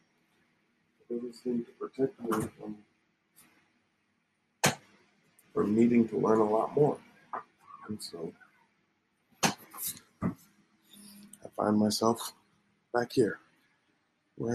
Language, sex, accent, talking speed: English, male, American, 80 wpm